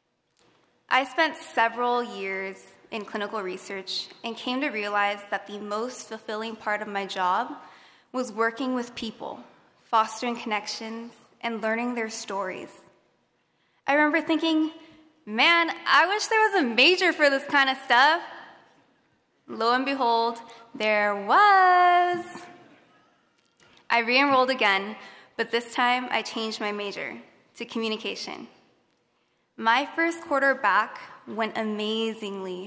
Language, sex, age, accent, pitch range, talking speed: English, female, 20-39, American, 215-275 Hz, 125 wpm